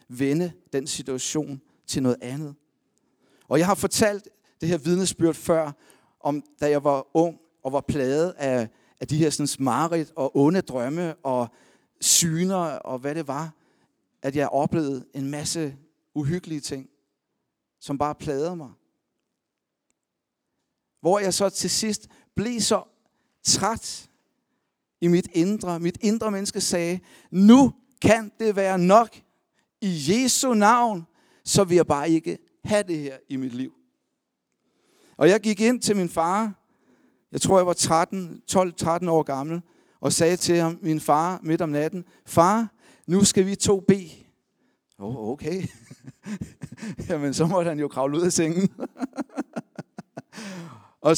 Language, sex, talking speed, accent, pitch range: Danish, male, 145 wpm, native, 145-190 Hz